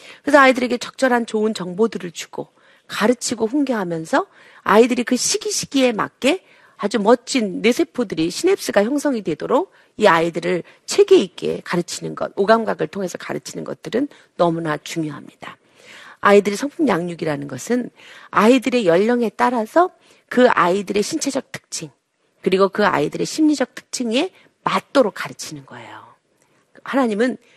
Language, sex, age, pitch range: Korean, female, 40-59, 190-265 Hz